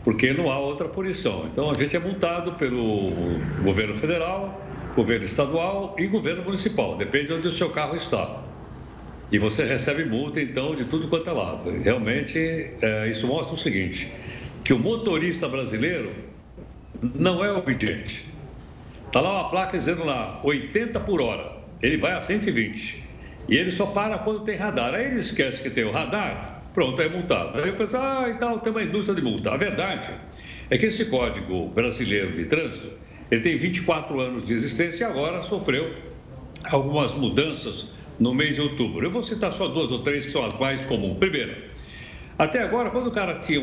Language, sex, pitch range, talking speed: Portuguese, male, 125-195 Hz, 180 wpm